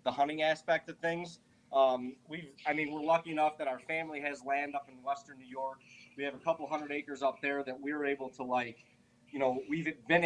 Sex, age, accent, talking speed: male, 30-49, American, 230 wpm